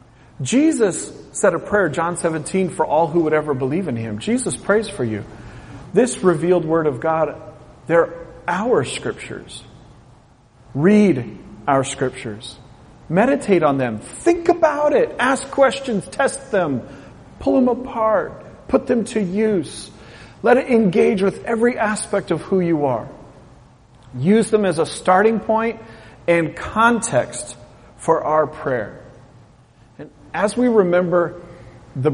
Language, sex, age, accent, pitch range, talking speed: English, male, 40-59, American, 120-175 Hz, 135 wpm